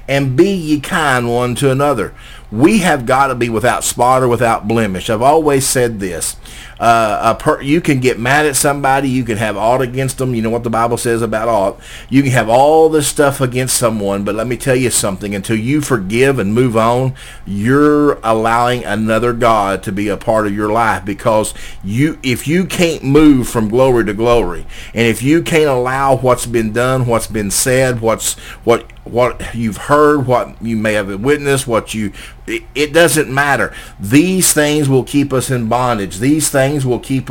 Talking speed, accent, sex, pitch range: 195 wpm, American, male, 115-145 Hz